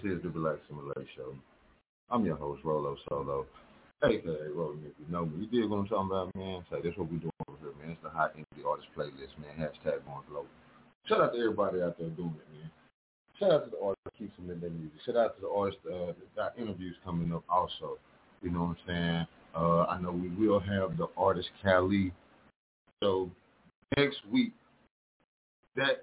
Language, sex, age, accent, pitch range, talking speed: English, male, 30-49, American, 85-120 Hz, 215 wpm